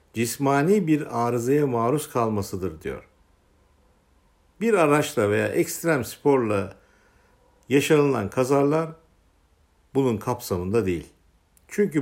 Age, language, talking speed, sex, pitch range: 60-79, Turkish, 85 wpm, male, 100-150 Hz